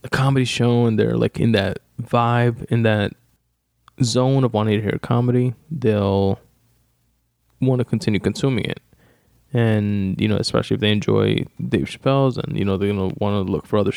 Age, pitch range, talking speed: 20-39, 95-120 Hz, 180 wpm